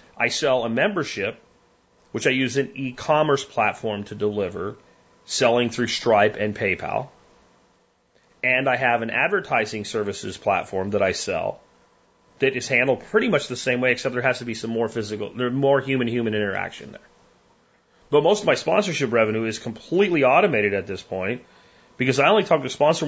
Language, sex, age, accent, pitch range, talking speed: English, male, 30-49, American, 115-160 Hz, 175 wpm